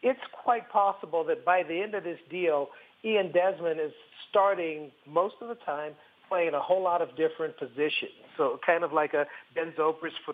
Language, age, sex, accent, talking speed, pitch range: English, 50-69, male, American, 185 wpm, 155-200 Hz